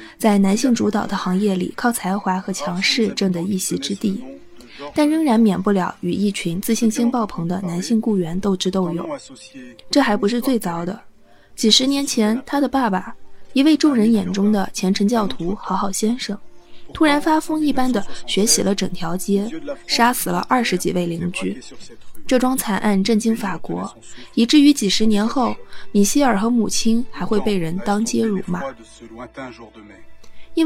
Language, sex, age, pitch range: Chinese, female, 20-39, 190-250 Hz